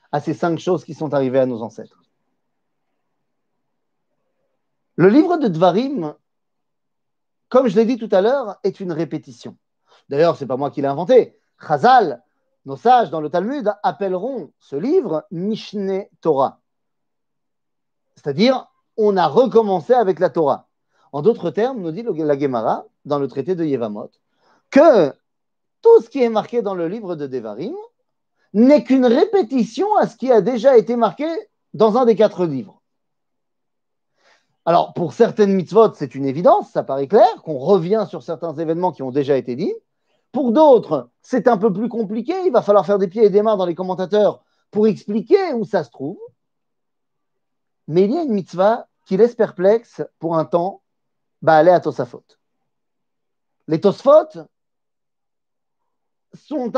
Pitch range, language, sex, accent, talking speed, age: 170-250 Hz, French, male, French, 160 wpm, 40-59